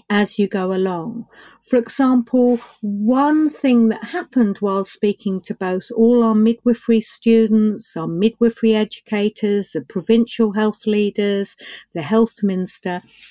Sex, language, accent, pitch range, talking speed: female, English, British, 200-240 Hz, 125 wpm